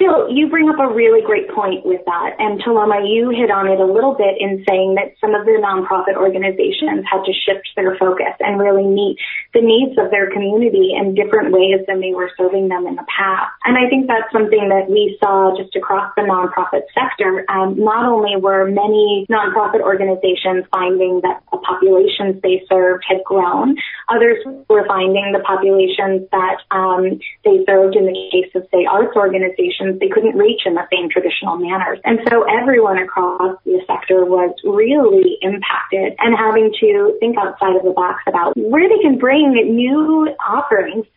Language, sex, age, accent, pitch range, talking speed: English, female, 20-39, American, 190-240 Hz, 185 wpm